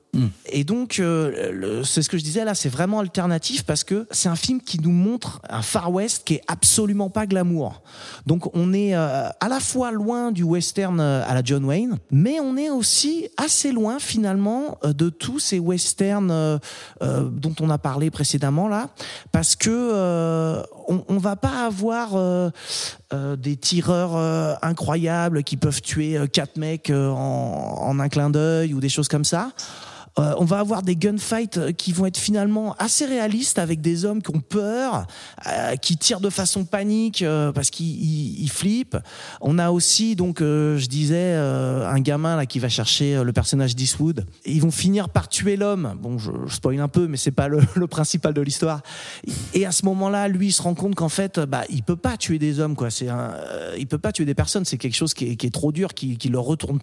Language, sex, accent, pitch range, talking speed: French, male, French, 145-200 Hz, 210 wpm